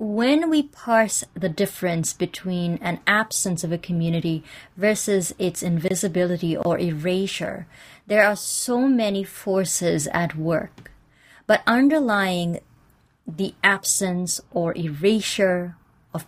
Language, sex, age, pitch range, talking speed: English, female, 30-49, 165-210 Hz, 110 wpm